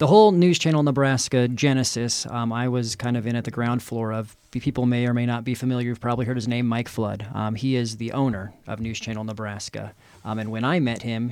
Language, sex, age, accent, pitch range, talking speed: English, male, 30-49, American, 110-125 Hz, 245 wpm